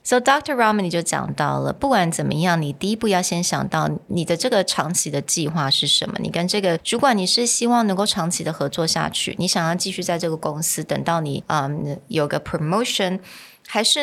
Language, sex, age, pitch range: Chinese, female, 20-39, 155-205 Hz